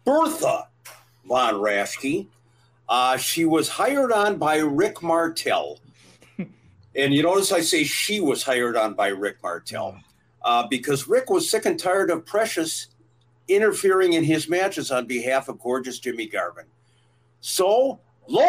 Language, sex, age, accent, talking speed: English, male, 50-69, American, 140 wpm